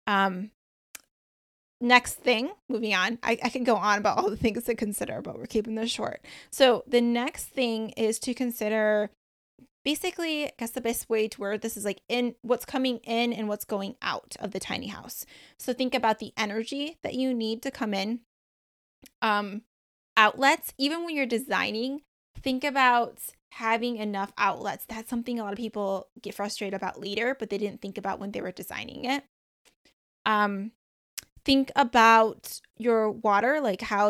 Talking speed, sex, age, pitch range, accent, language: 175 wpm, female, 20-39, 210-250 Hz, American, English